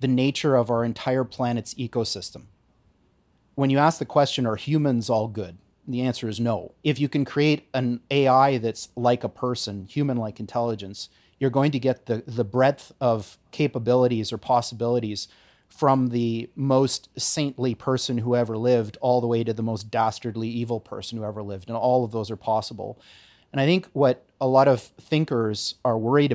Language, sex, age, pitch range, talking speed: English, male, 30-49, 115-135 Hz, 180 wpm